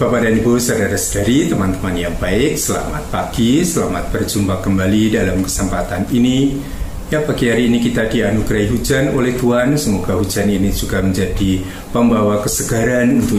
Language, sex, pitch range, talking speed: Indonesian, male, 95-135 Hz, 145 wpm